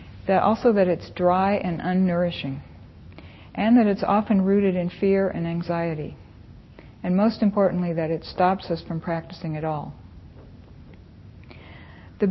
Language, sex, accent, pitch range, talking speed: English, female, American, 170-205 Hz, 135 wpm